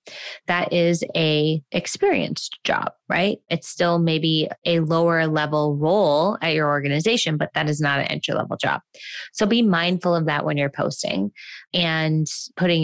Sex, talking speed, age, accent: female, 160 wpm, 20-39, American